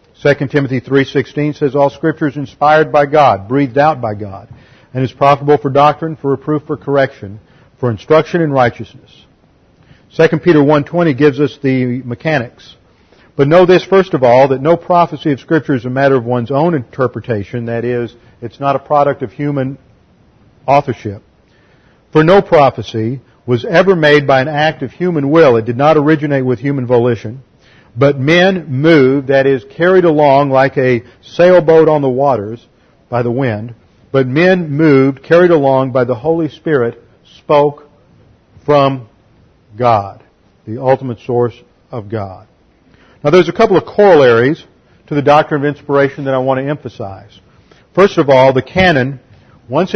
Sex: male